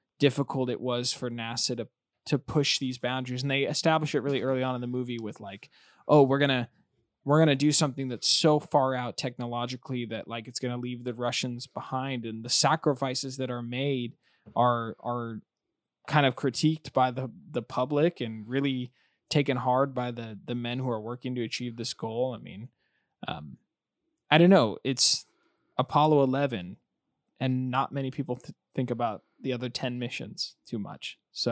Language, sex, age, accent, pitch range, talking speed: English, male, 20-39, American, 120-140 Hz, 180 wpm